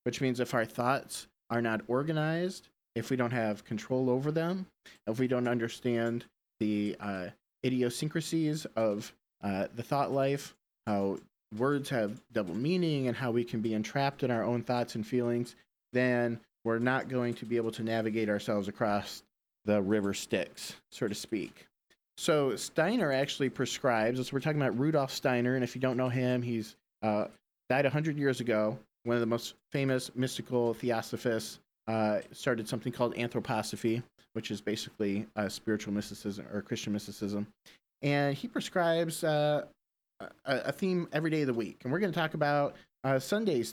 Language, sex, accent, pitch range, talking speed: English, male, American, 110-140 Hz, 170 wpm